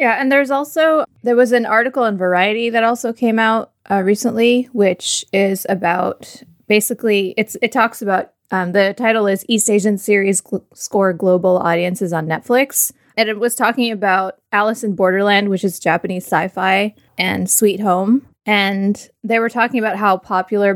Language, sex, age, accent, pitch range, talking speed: English, female, 20-39, American, 180-225 Hz, 170 wpm